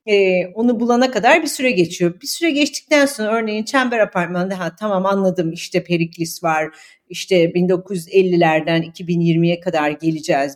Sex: female